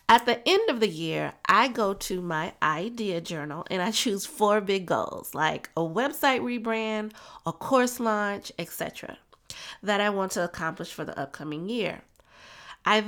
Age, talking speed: 30-49, 165 wpm